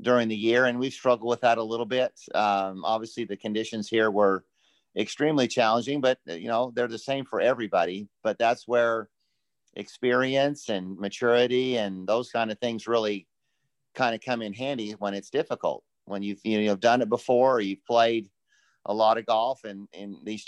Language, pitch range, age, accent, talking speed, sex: English, 105-120 Hz, 50-69, American, 190 wpm, male